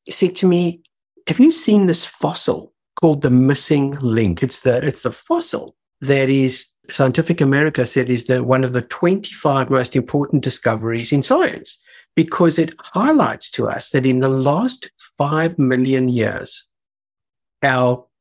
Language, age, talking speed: English, 50-69, 155 wpm